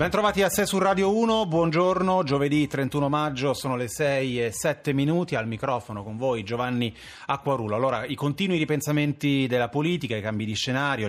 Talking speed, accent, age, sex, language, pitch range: 180 wpm, native, 30-49, male, Italian, 115-145 Hz